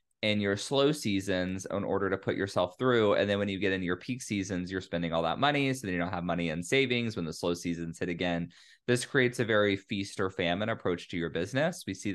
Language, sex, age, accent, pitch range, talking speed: English, male, 20-39, American, 90-130 Hz, 250 wpm